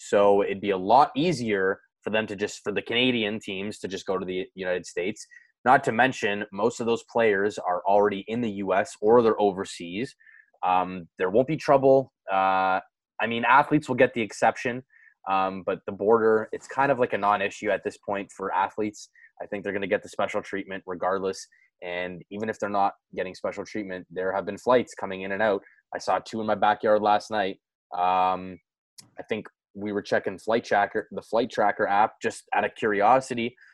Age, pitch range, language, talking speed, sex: 20-39, 95-120 Hz, English, 205 wpm, male